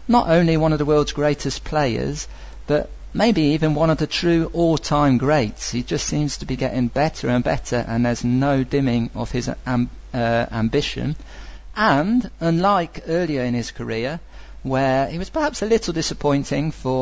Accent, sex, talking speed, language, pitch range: British, male, 175 wpm, English, 125-160 Hz